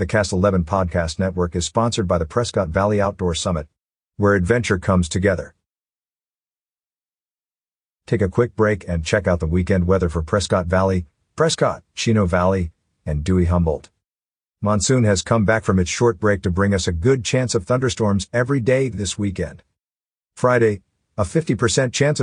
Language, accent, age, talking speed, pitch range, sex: English, American, 50-69, 160 wpm, 90-115 Hz, male